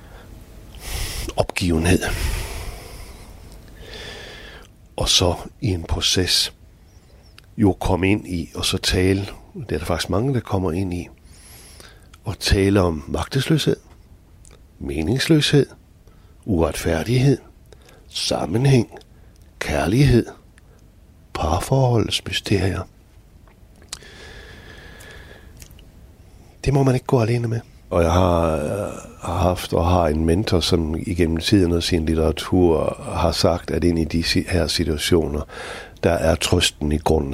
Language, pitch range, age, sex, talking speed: Danish, 80-105 Hz, 60-79, male, 105 wpm